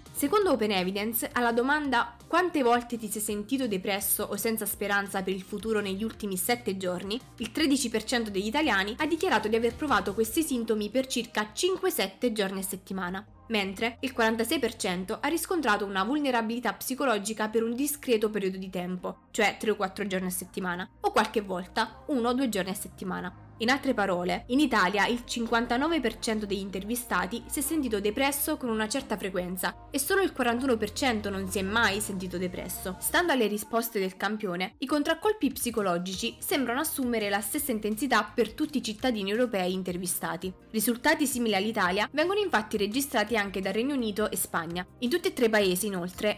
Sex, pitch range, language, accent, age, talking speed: female, 195-250 Hz, Italian, native, 20-39, 165 wpm